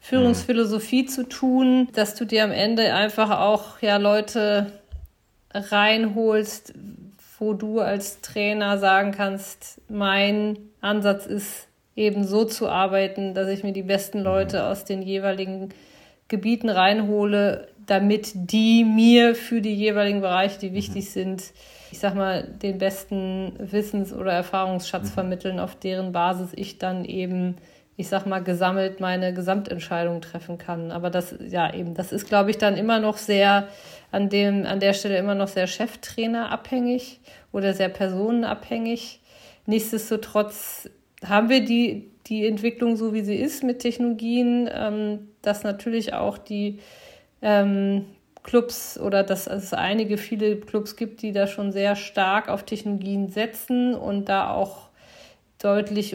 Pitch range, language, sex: 195-220 Hz, German, female